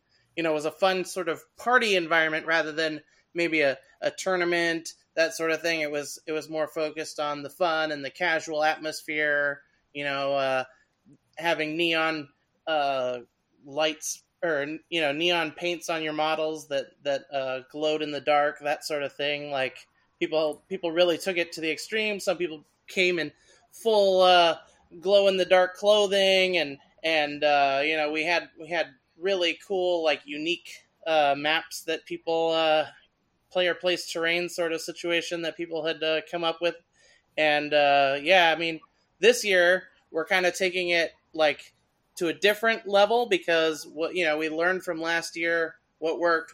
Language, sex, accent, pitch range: English, male, American, 150-175 Hz